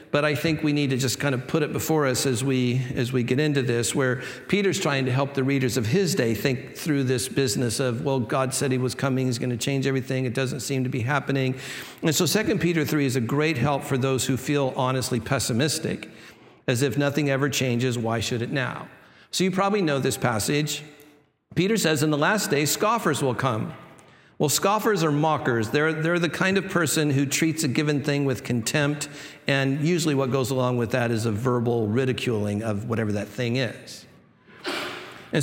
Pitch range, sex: 130-160 Hz, male